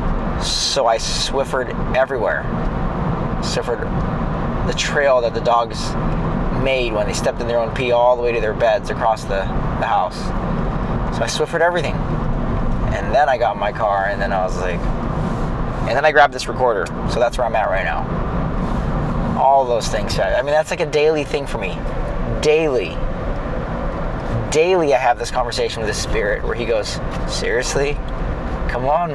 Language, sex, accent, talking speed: English, male, American, 175 wpm